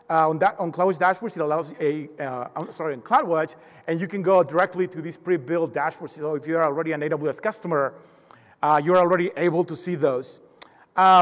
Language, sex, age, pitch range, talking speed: English, male, 40-59, 175-220 Hz, 215 wpm